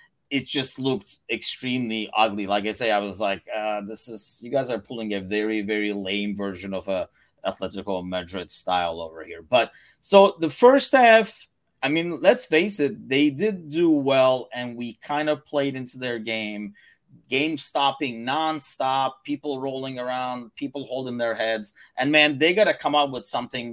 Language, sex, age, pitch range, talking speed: English, male, 30-49, 110-160 Hz, 180 wpm